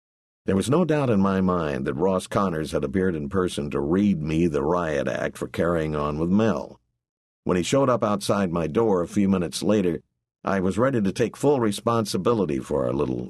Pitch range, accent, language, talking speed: 70-100 Hz, American, English, 210 wpm